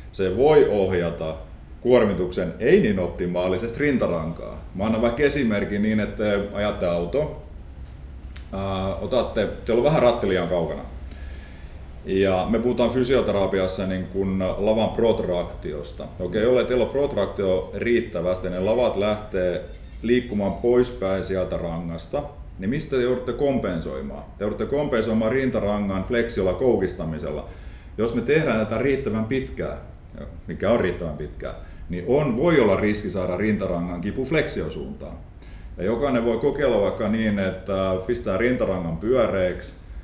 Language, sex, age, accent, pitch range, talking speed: Finnish, male, 30-49, native, 85-115 Hz, 125 wpm